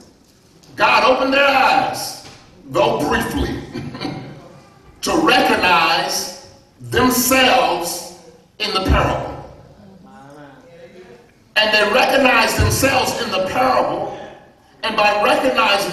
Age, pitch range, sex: 40-59, 180-270 Hz, male